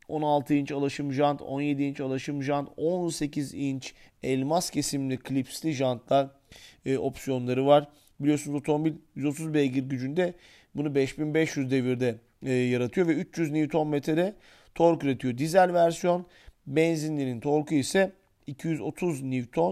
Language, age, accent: Turkish, 40-59, native